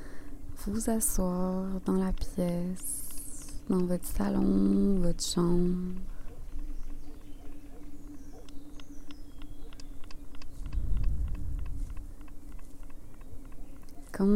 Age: 20-39